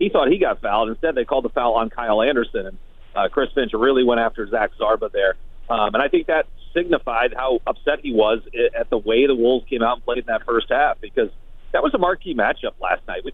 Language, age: English, 40-59